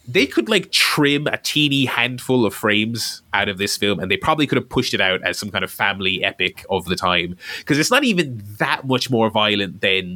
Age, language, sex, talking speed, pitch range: 20-39, English, male, 230 wpm, 105-150 Hz